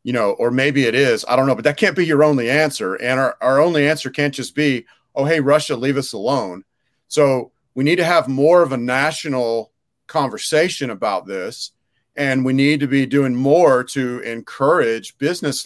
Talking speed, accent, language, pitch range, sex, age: 200 wpm, American, English, 130-160 Hz, male, 40-59